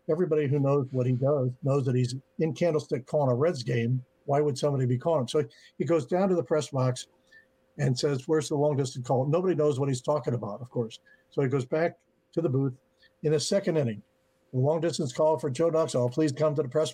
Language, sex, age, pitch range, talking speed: English, male, 60-79, 130-160 Hz, 230 wpm